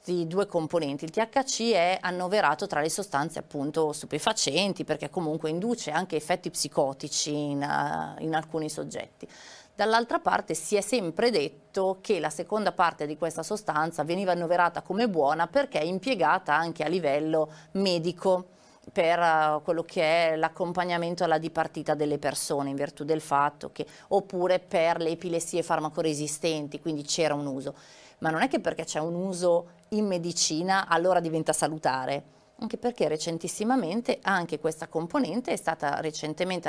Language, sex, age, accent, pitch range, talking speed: Italian, female, 30-49, native, 155-195 Hz, 150 wpm